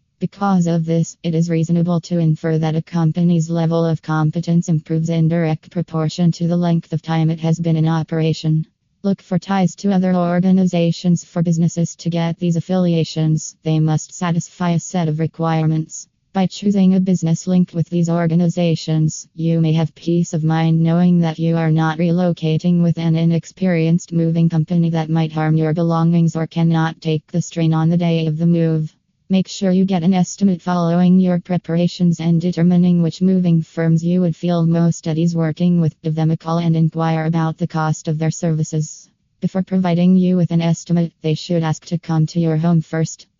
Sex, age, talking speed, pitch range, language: female, 20-39, 190 wpm, 160-175 Hz, English